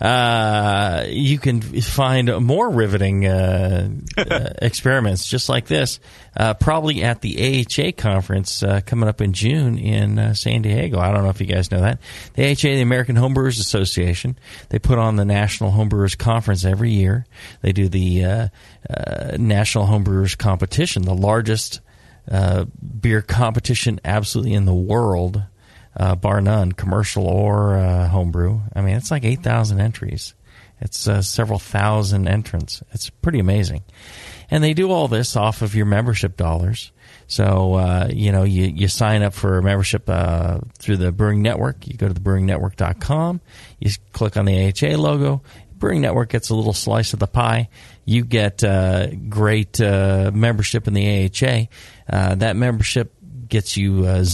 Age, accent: 30-49, American